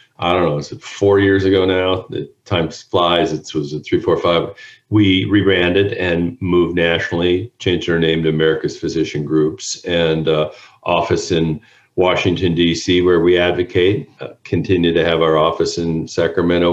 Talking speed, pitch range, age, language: 170 wpm, 80-100 Hz, 50-69, English